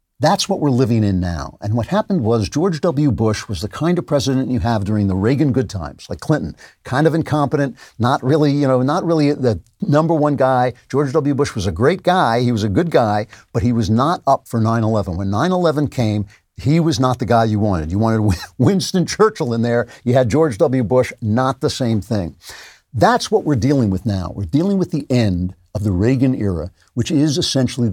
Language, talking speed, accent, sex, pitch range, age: English, 220 wpm, American, male, 105-140 Hz, 60-79